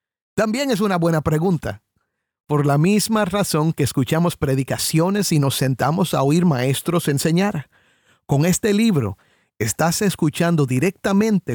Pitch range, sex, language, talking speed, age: 140-190 Hz, male, Spanish, 130 wpm, 50-69